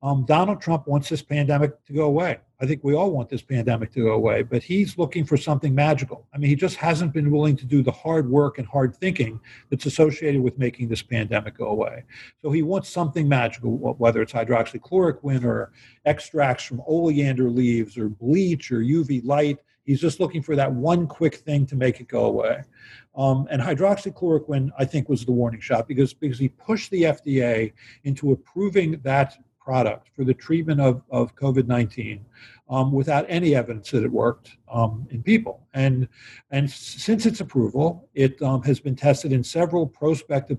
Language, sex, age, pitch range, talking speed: English, male, 50-69, 120-150 Hz, 190 wpm